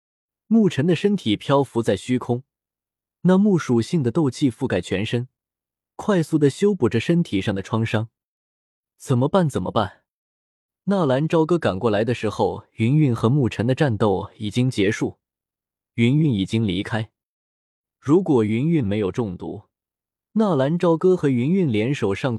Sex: male